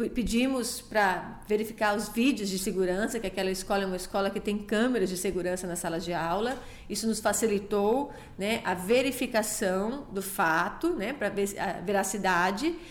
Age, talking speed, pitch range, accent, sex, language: 30-49, 165 wpm, 200-235 Hz, Brazilian, female, Portuguese